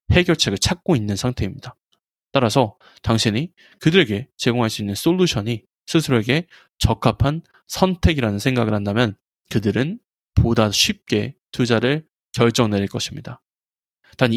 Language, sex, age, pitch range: Korean, male, 20-39, 110-155 Hz